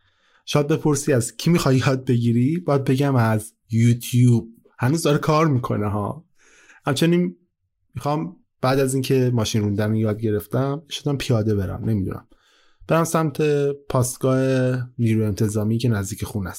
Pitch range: 105-140 Hz